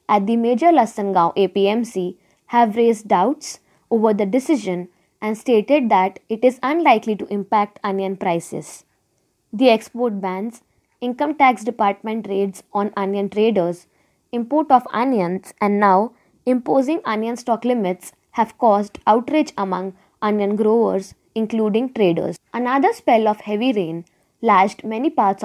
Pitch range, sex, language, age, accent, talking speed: 195-250 Hz, female, Marathi, 20-39, native, 130 wpm